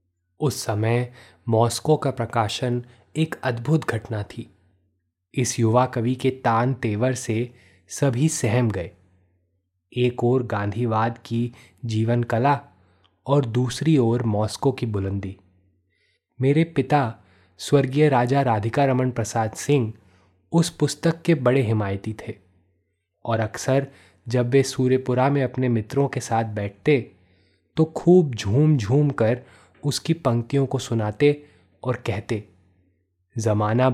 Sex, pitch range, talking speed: male, 100-130 Hz, 120 wpm